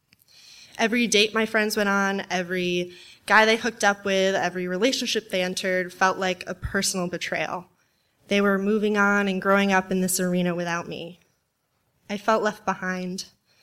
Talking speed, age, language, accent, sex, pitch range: 165 wpm, 20-39, English, American, female, 175-200 Hz